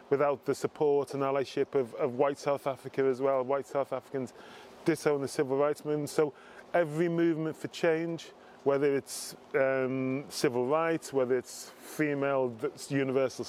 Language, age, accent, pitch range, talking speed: English, 20-39, British, 130-155 Hz, 150 wpm